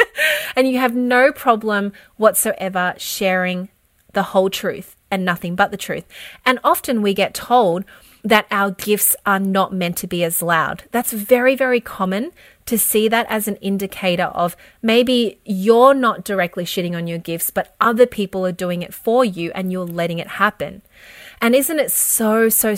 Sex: female